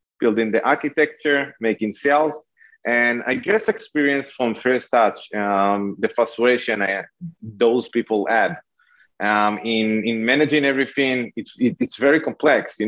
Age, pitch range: 30-49, 110-140 Hz